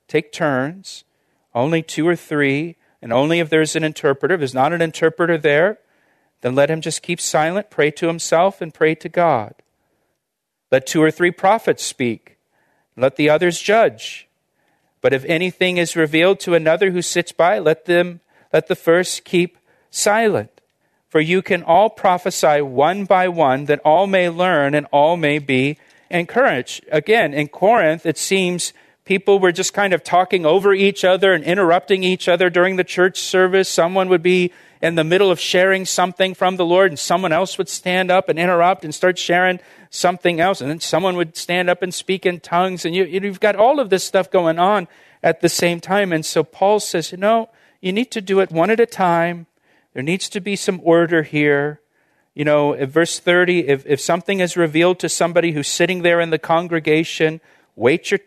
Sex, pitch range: male, 160-185 Hz